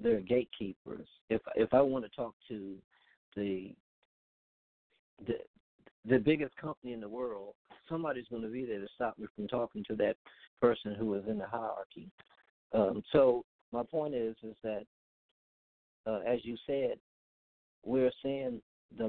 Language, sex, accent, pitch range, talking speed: English, male, American, 105-125 Hz, 155 wpm